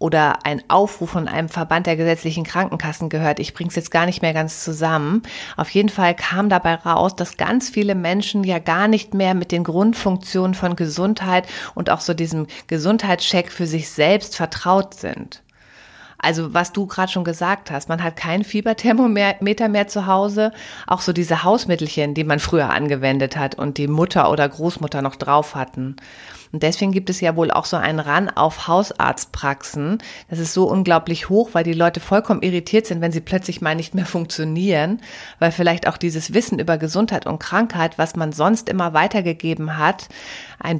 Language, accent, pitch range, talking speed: German, German, 160-200 Hz, 185 wpm